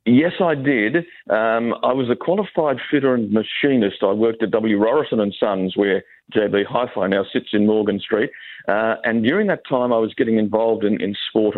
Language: English